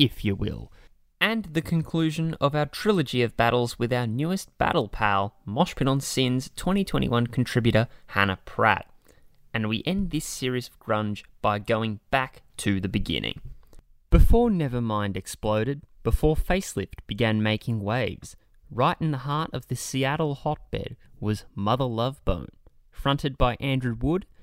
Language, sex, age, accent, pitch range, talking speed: English, male, 10-29, Australian, 105-150 Hz, 145 wpm